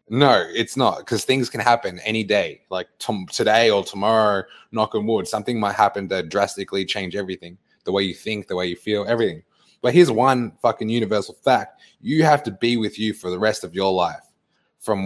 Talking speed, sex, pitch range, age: 205 wpm, male, 100-120 Hz, 20-39